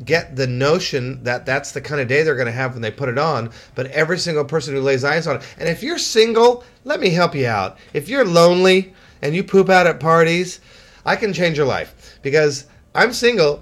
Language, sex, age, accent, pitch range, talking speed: English, male, 40-59, American, 130-170 Hz, 230 wpm